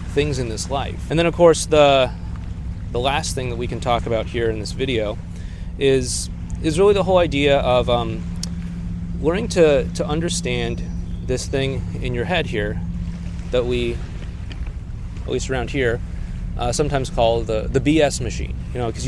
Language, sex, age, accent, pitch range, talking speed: English, male, 30-49, American, 90-140 Hz, 175 wpm